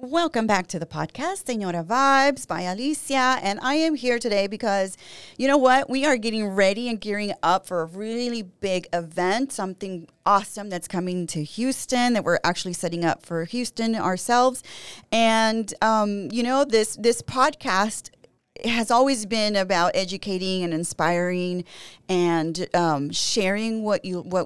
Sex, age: female, 30-49